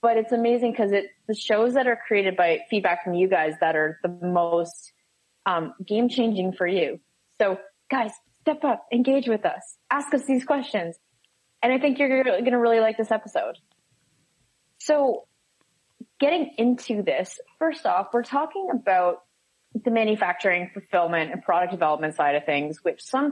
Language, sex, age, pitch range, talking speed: English, female, 20-39, 175-240 Hz, 165 wpm